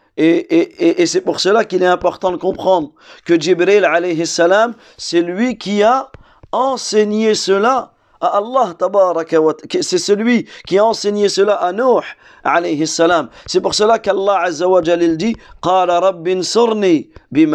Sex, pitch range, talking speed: male, 160-210 Hz, 145 wpm